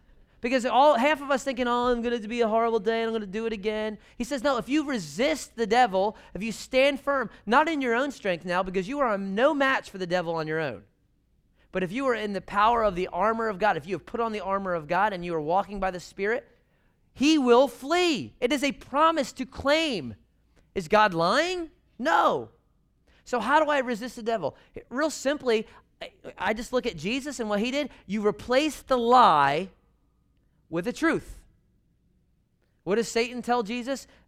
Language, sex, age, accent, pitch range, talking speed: English, male, 30-49, American, 150-250 Hz, 215 wpm